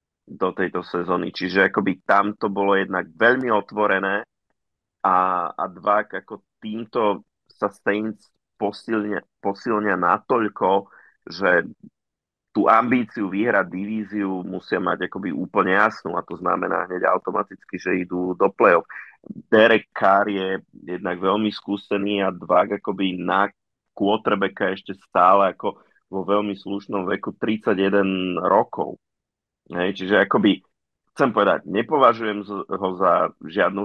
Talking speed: 120 wpm